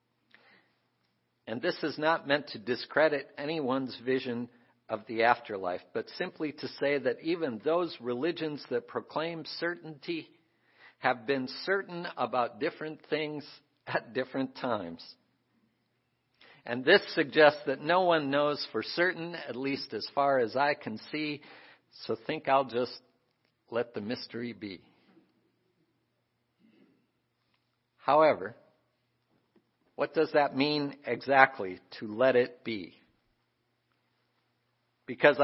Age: 50-69